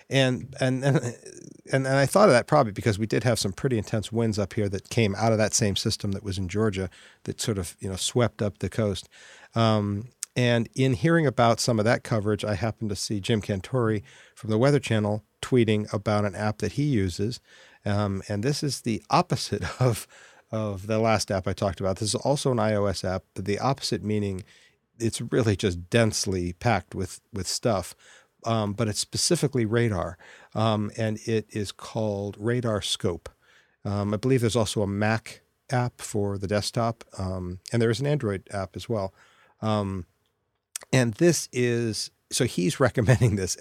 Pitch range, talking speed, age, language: 100-120 Hz, 190 wpm, 50-69, English